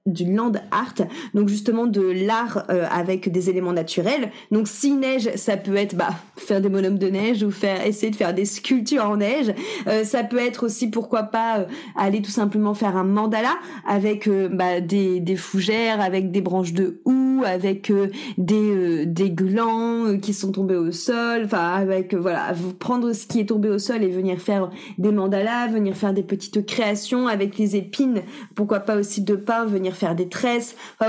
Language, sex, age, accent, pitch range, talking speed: French, female, 30-49, French, 195-240 Hz, 200 wpm